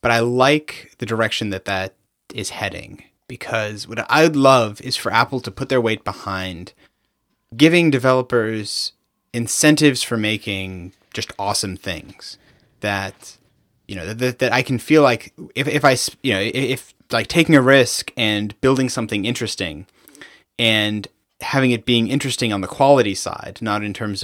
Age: 30-49